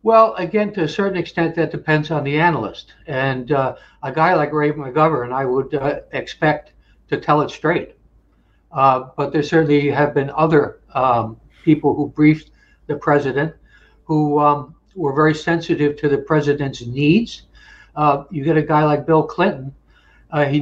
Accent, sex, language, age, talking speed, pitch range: American, male, English, 60-79, 170 wpm, 140-165 Hz